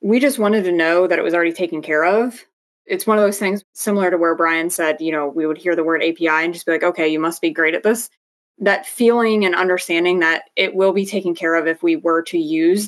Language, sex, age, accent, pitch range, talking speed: English, female, 20-39, American, 165-200 Hz, 265 wpm